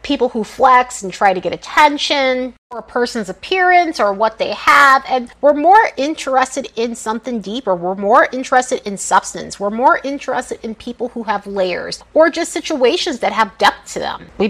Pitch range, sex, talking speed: 210-275 Hz, female, 185 wpm